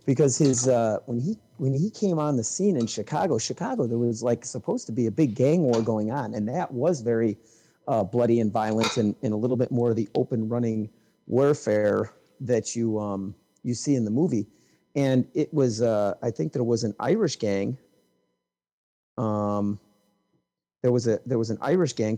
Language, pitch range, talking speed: English, 110-130 Hz, 200 wpm